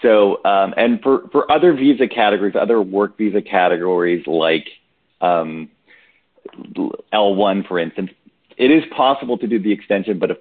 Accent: American